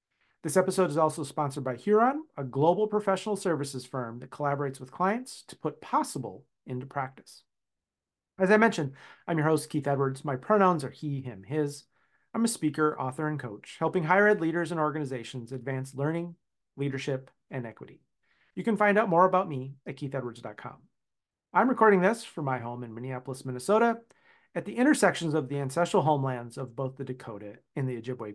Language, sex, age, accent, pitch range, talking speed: English, male, 40-59, American, 135-185 Hz, 180 wpm